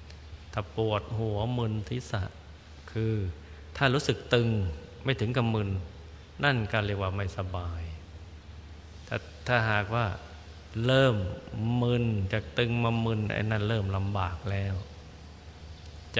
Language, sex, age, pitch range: Thai, male, 20-39, 90-115 Hz